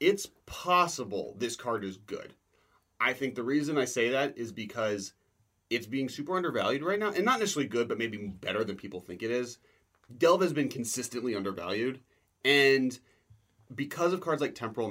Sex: male